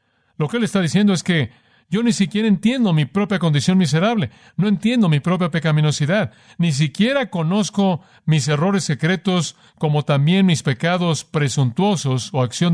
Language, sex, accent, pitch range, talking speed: Spanish, male, Mexican, 115-155 Hz, 155 wpm